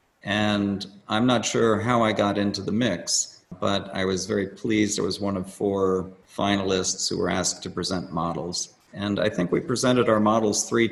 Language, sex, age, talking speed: English, male, 50-69, 190 wpm